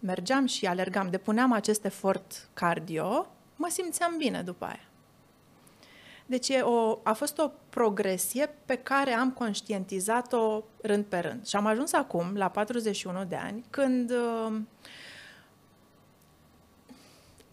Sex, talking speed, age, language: female, 120 wpm, 30-49, Romanian